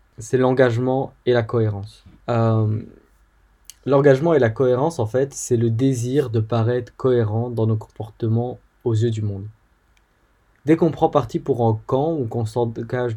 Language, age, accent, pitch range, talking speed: French, 20-39, French, 110-130 Hz, 160 wpm